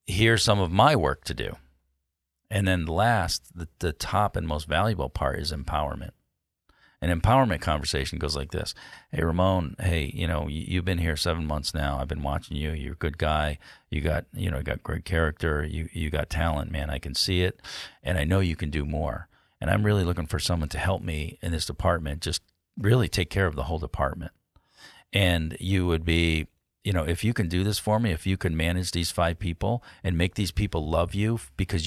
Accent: American